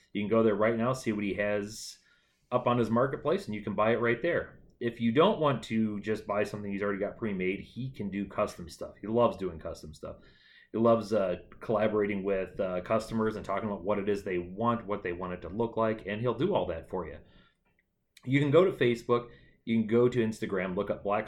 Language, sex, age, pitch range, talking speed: English, male, 30-49, 100-120 Hz, 240 wpm